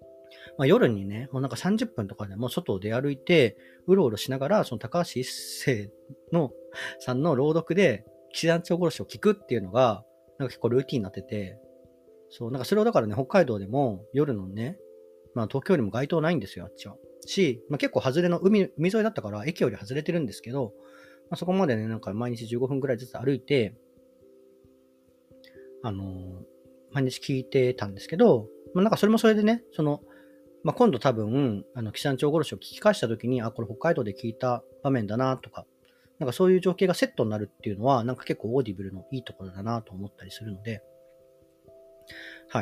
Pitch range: 105-155 Hz